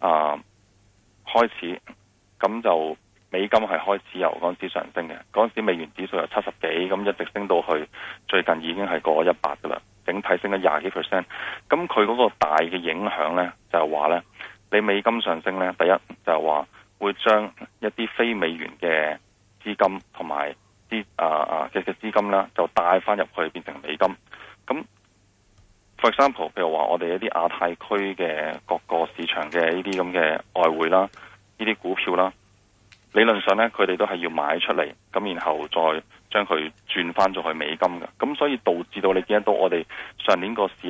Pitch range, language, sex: 85-105 Hz, Chinese, male